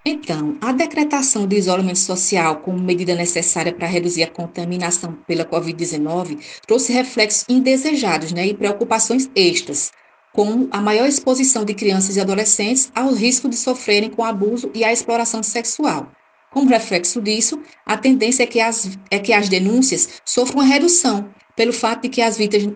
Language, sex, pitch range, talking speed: Portuguese, female, 195-255 Hz, 160 wpm